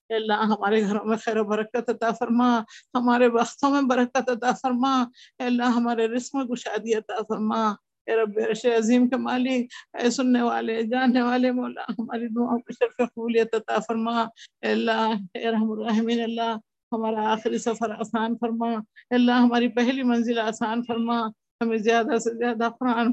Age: 50-69